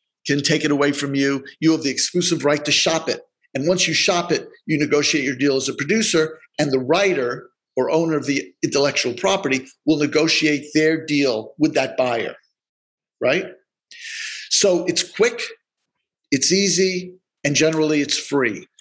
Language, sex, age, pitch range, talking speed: English, male, 50-69, 145-195 Hz, 165 wpm